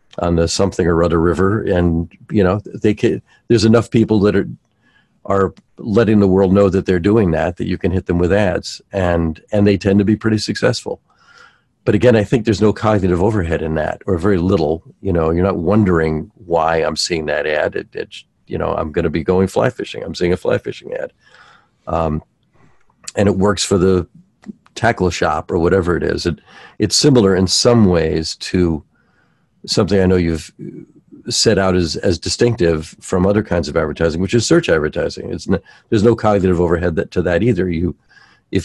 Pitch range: 85-105 Hz